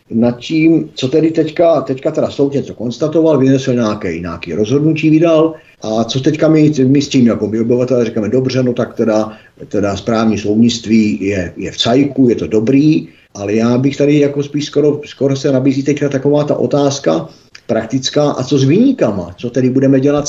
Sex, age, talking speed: male, 50-69, 185 wpm